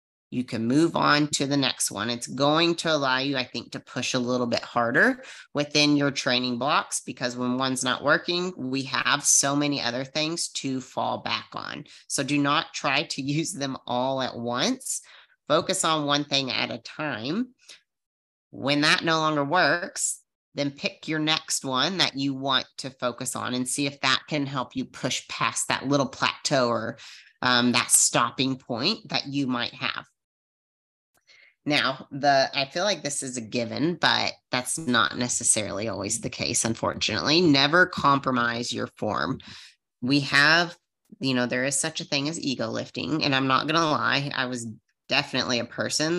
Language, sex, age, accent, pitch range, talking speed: English, female, 30-49, American, 125-150 Hz, 180 wpm